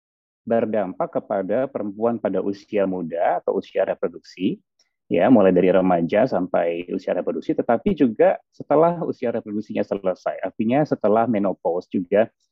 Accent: native